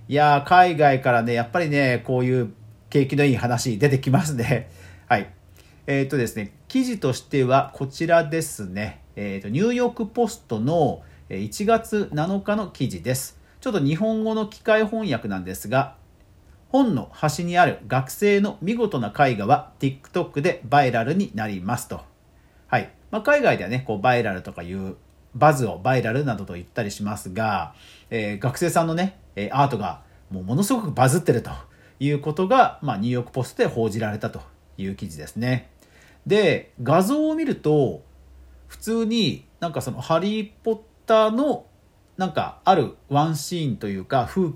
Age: 50-69